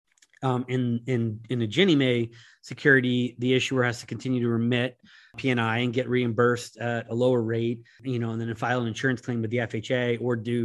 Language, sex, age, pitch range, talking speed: English, male, 30-49, 120-140 Hz, 205 wpm